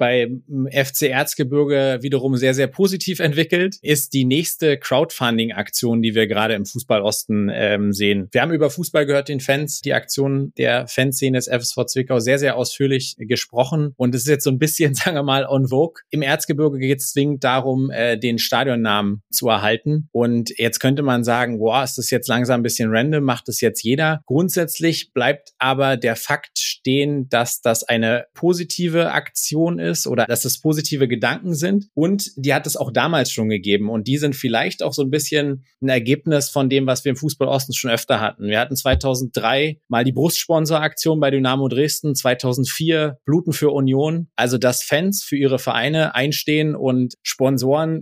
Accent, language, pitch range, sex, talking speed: German, German, 120-150 Hz, male, 180 wpm